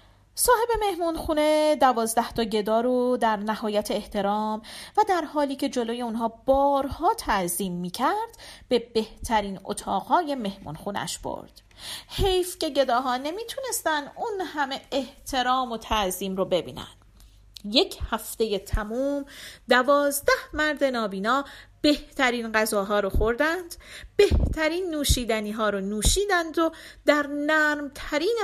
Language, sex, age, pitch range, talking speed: Persian, female, 40-59, 220-315 Hz, 110 wpm